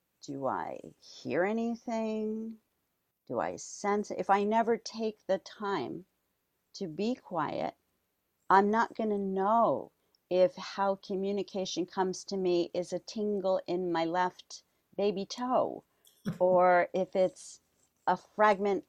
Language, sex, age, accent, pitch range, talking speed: English, female, 50-69, American, 170-210 Hz, 125 wpm